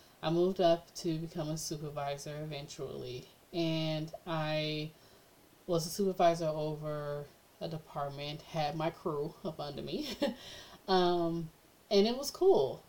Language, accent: English, American